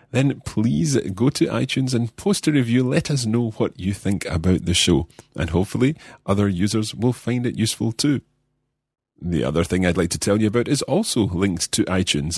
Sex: male